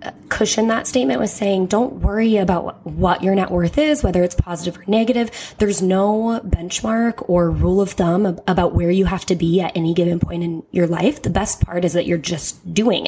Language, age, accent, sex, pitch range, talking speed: English, 20-39, American, female, 165-195 Hz, 210 wpm